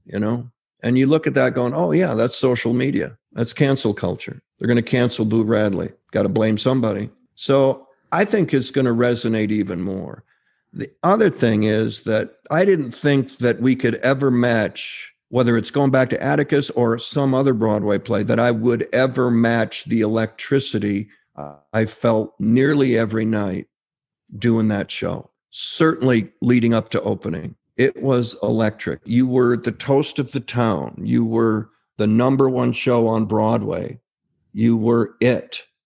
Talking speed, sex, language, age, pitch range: 170 wpm, male, English, 50-69, 110-135 Hz